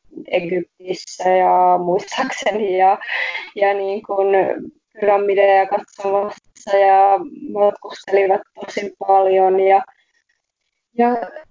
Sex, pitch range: female, 195-235 Hz